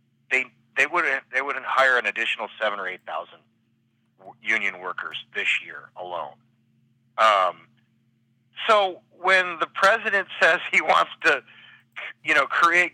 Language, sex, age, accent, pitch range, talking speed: English, male, 40-59, American, 115-175 Hz, 135 wpm